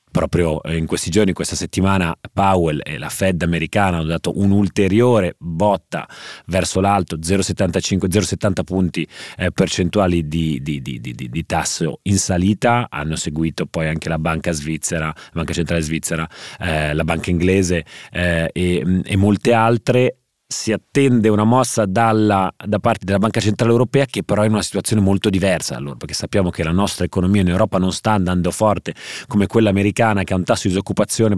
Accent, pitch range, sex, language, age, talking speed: native, 85-100 Hz, male, Italian, 30-49, 175 wpm